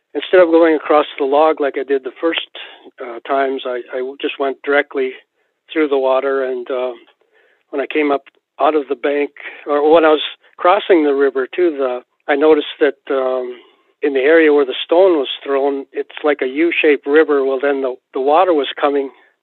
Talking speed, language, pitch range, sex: 200 wpm, English, 135-160 Hz, male